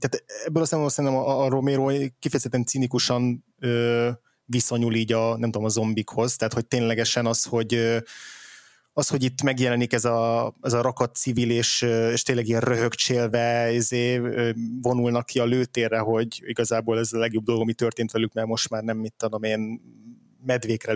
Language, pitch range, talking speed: Hungarian, 115-130 Hz, 170 wpm